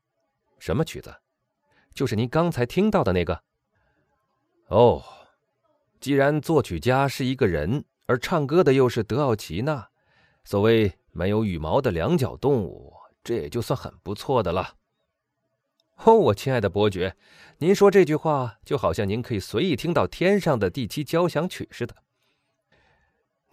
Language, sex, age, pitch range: Chinese, male, 30-49, 90-145 Hz